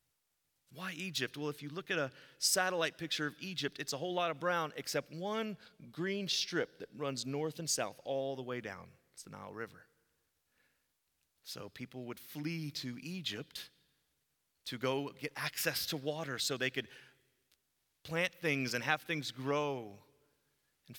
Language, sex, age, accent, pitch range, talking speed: English, male, 30-49, American, 130-165 Hz, 165 wpm